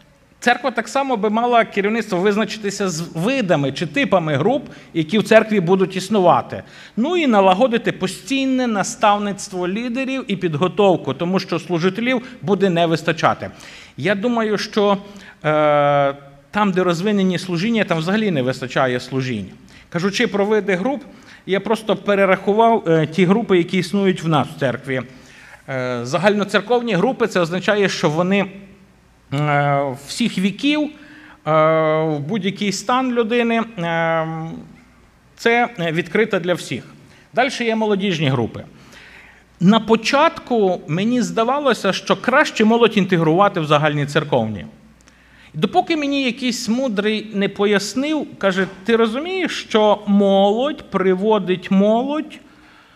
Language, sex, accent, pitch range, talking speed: Ukrainian, male, native, 170-230 Hz, 120 wpm